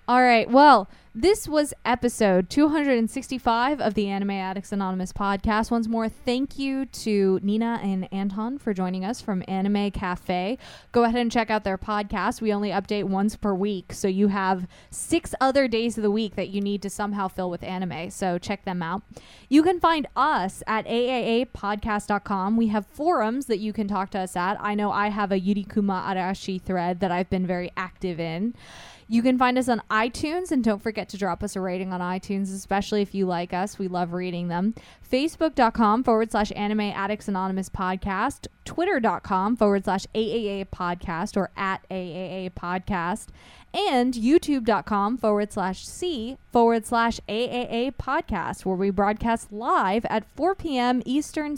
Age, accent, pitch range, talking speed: 20-39, American, 190-235 Hz, 175 wpm